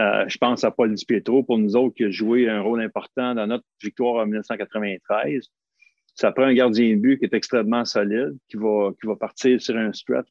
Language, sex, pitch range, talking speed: French, male, 110-130 Hz, 220 wpm